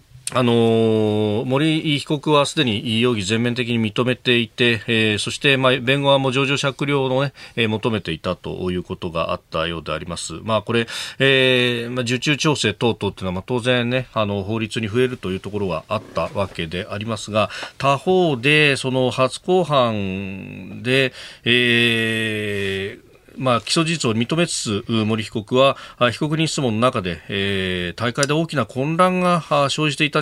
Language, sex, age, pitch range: Japanese, male, 40-59, 105-135 Hz